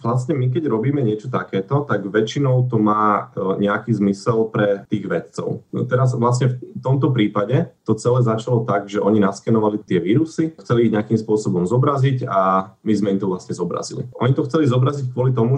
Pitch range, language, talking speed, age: 105-125 Hz, Slovak, 185 wpm, 30-49